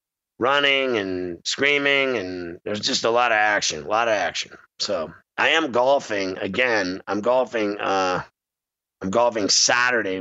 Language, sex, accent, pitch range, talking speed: English, male, American, 95-115 Hz, 145 wpm